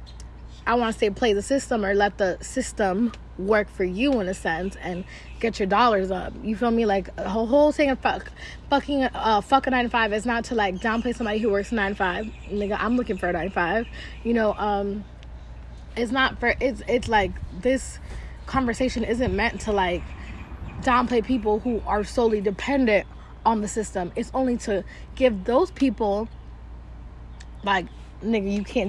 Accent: American